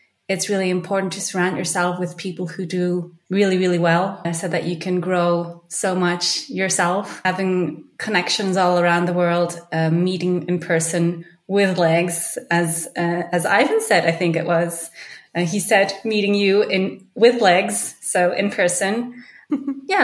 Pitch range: 165-205 Hz